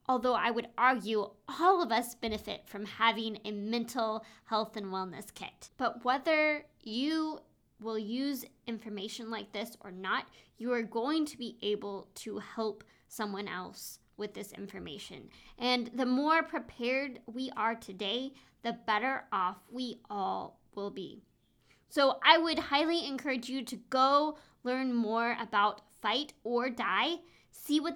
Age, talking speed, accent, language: 20-39, 150 wpm, American, English